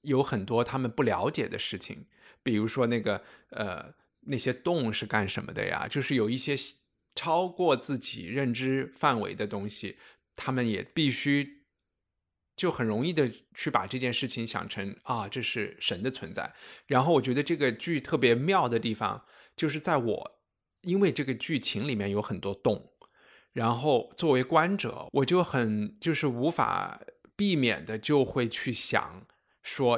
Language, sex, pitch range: Chinese, male, 110-145 Hz